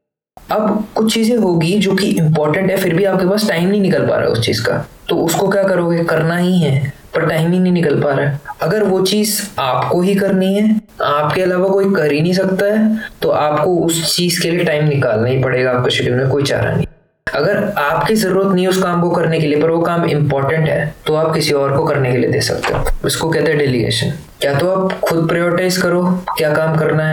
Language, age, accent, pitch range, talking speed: Hindi, 20-39, native, 150-190 Hz, 150 wpm